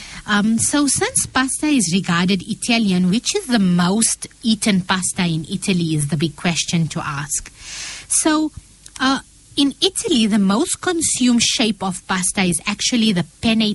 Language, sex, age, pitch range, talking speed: English, female, 20-39, 185-245 Hz, 155 wpm